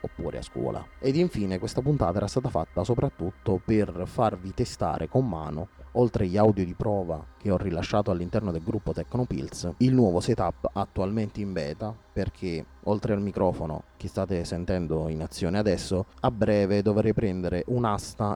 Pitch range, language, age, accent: 90-115 Hz, Italian, 30-49, native